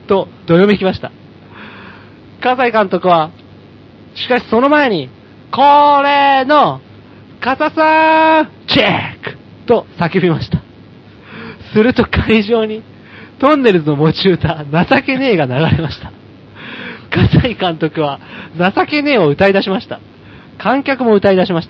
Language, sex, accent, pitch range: Japanese, male, native, 150-230 Hz